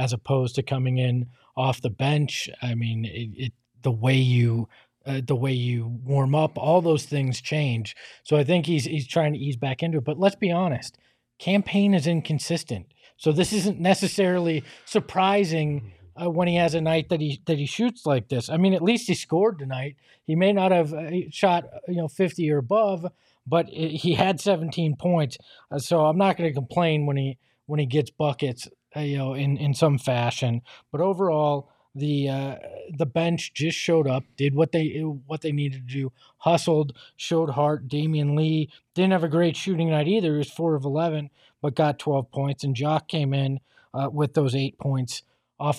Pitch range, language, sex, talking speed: 135-165 Hz, English, male, 200 wpm